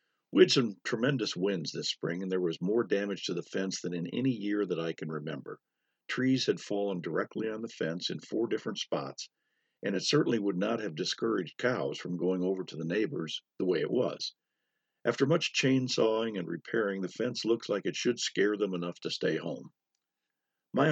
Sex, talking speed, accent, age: male, 200 wpm, American, 50-69